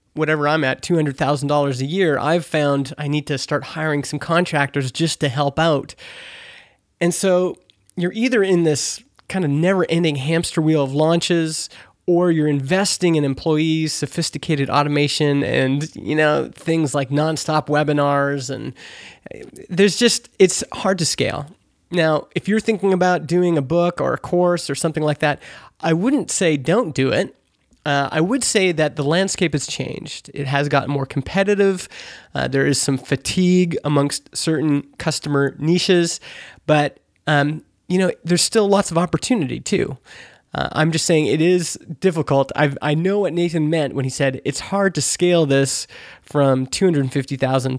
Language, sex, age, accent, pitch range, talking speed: English, male, 30-49, American, 145-180 Hz, 165 wpm